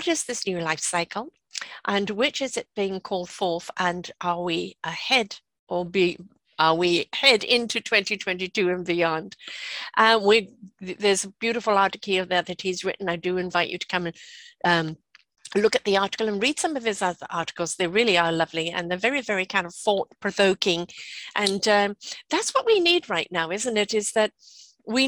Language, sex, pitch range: English, female, 180-225 Hz